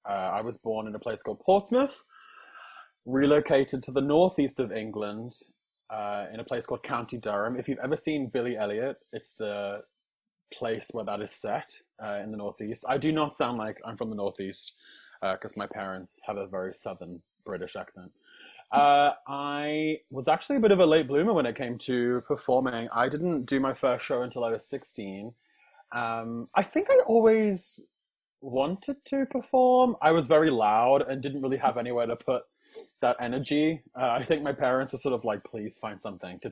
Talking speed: 190 wpm